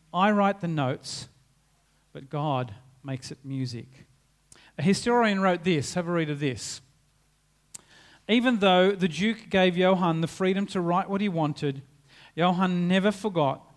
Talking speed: 150 wpm